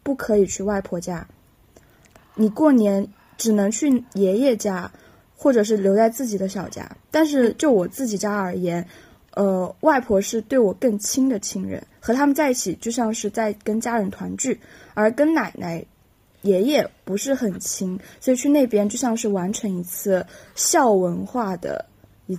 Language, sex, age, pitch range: Chinese, female, 20-39, 195-250 Hz